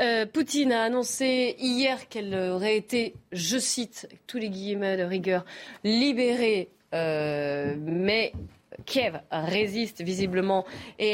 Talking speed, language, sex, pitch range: 115 wpm, French, female, 190-230 Hz